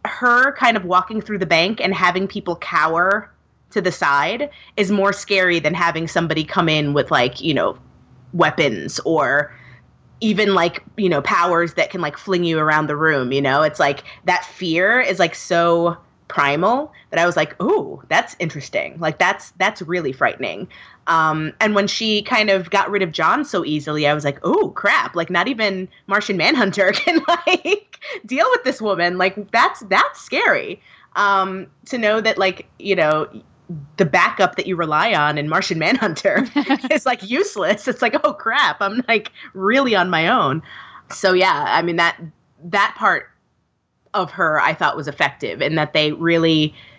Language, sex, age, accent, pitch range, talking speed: English, female, 20-39, American, 160-205 Hz, 180 wpm